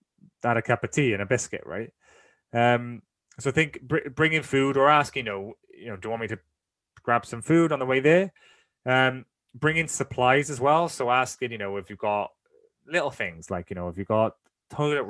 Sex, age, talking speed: male, 20-39, 220 wpm